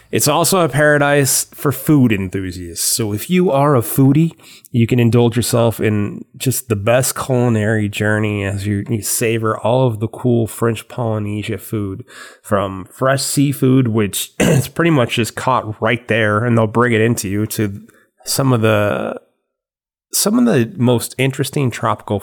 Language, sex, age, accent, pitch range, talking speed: English, male, 30-49, American, 105-125 Hz, 165 wpm